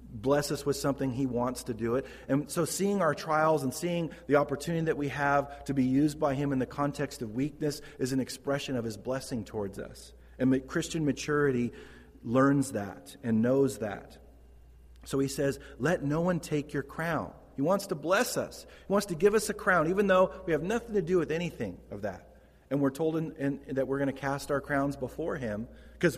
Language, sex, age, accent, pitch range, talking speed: English, male, 40-59, American, 130-170 Hz, 220 wpm